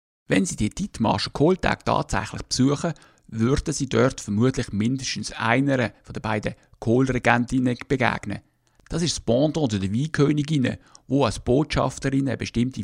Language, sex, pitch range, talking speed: German, male, 105-135 Hz, 135 wpm